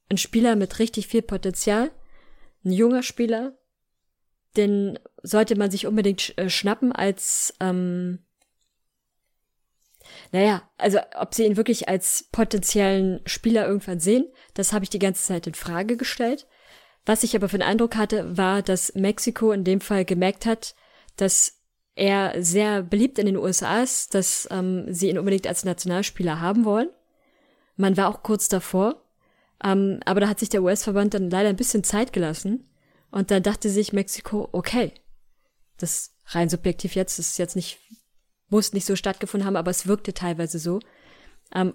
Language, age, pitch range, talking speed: German, 20-39, 190-220 Hz, 160 wpm